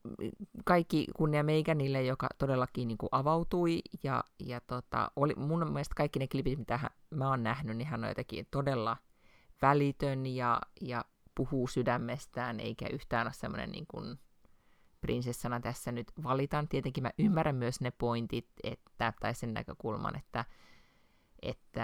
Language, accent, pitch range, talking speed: Finnish, native, 120-145 Hz, 150 wpm